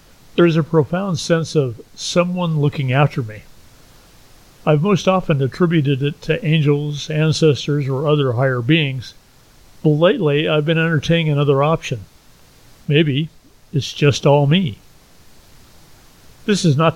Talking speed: 130 wpm